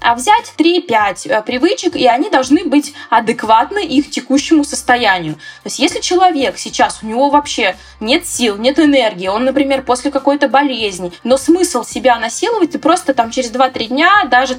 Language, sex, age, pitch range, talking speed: Russian, female, 20-39, 240-300 Hz, 165 wpm